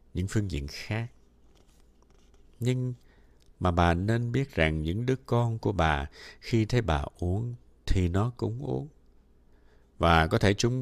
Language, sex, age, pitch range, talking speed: Vietnamese, male, 60-79, 75-110 Hz, 150 wpm